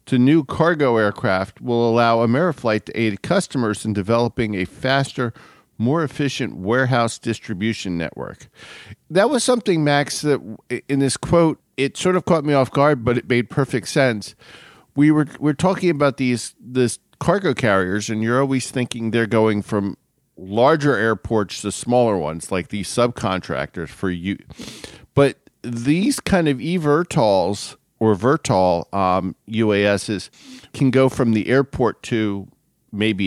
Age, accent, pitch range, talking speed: 50-69, American, 105-135 Hz, 145 wpm